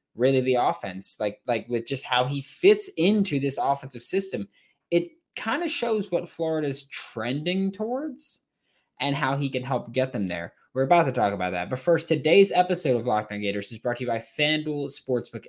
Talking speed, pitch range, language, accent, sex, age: 195 wpm, 100-145 Hz, English, American, male, 20-39